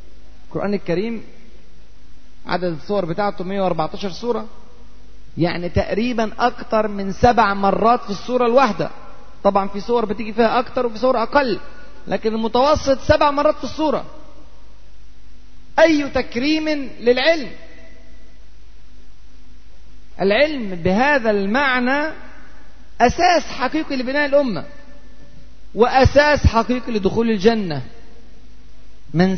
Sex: male